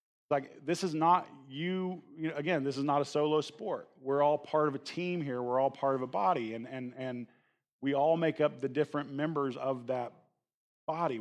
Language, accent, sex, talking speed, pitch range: English, American, male, 215 wpm, 135-165 Hz